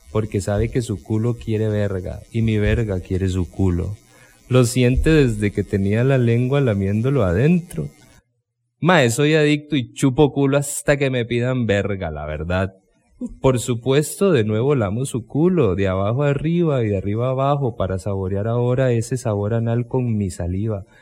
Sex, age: male, 30-49